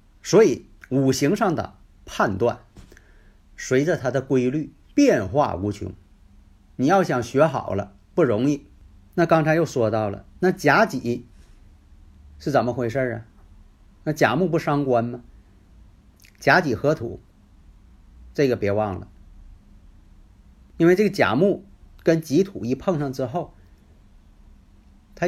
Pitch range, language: 95-135 Hz, Chinese